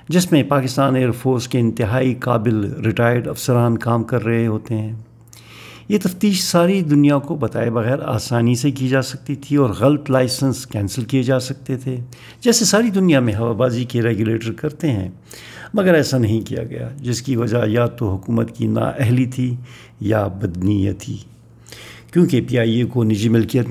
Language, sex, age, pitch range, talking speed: Urdu, male, 50-69, 110-130 Hz, 175 wpm